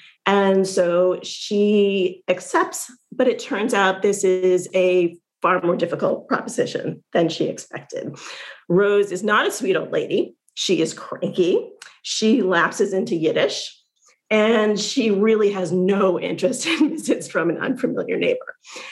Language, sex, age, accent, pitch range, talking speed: English, female, 40-59, American, 185-245 Hz, 140 wpm